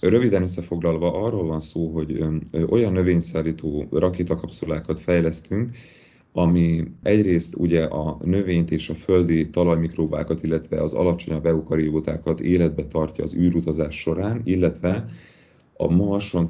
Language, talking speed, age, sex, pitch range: Hungarian, 115 wpm, 30-49, male, 80-90 Hz